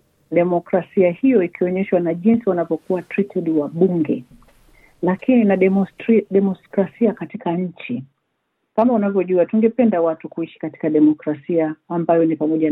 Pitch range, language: 170-235 Hz, Swahili